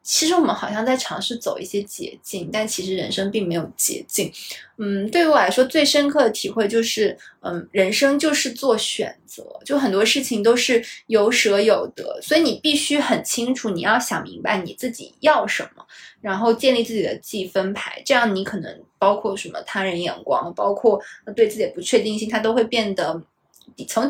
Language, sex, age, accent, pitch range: Chinese, female, 20-39, native, 200-255 Hz